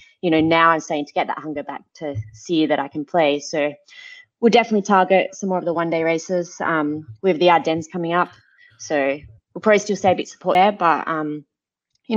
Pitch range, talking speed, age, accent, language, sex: 160-200 Hz, 220 wpm, 20-39, Australian, English, female